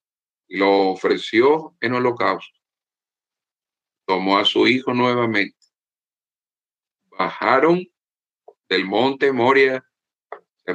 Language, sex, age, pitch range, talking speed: English, male, 50-69, 110-160 Hz, 85 wpm